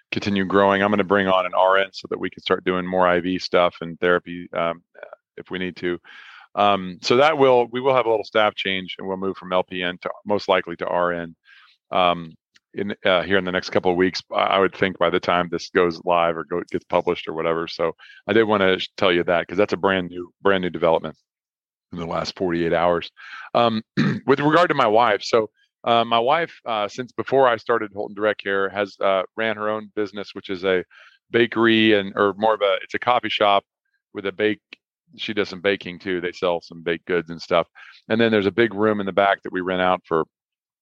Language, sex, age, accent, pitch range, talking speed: English, male, 40-59, American, 90-110 Hz, 230 wpm